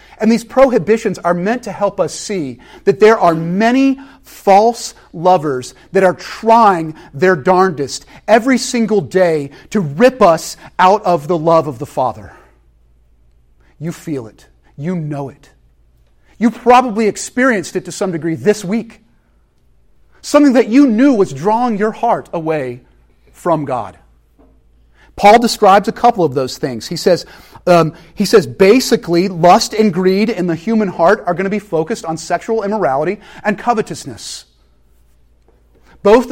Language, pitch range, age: English, 150-215 Hz, 40-59